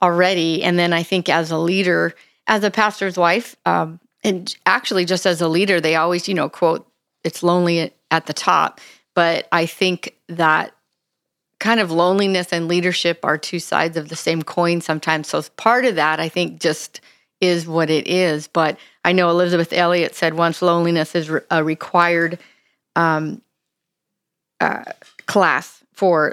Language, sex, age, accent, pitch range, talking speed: English, female, 40-59, American, 165-185 Hz, 165 wpm